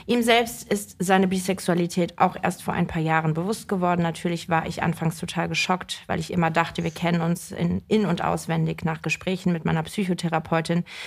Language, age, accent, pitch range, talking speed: German, 30-49, German, 160-185 Hz, 190 wpm